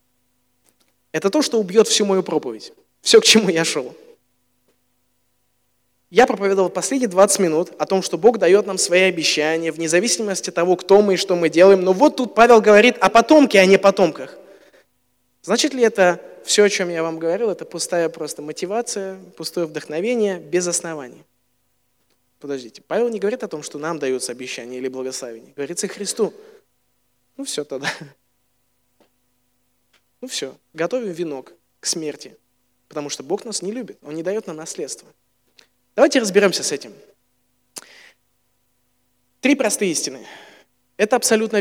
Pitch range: 125-195 Hz